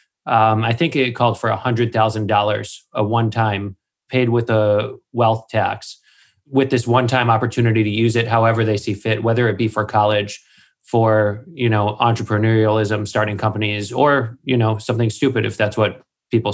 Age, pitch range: 20-39, 110-125 Hz